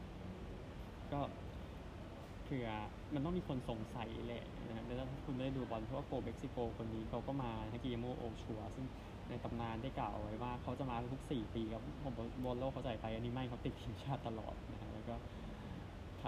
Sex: male